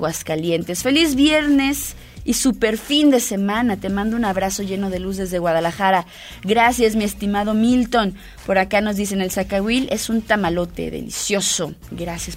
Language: Spanish